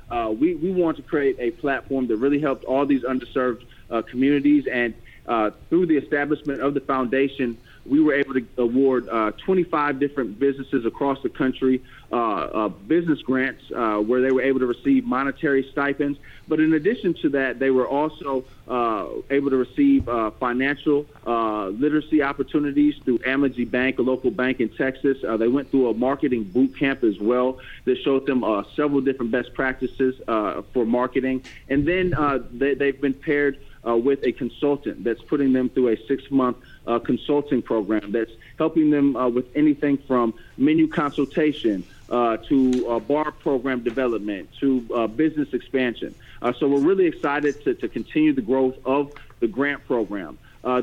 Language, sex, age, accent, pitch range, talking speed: English, male, 30-49, American, 125-145 Hz, 175 wpm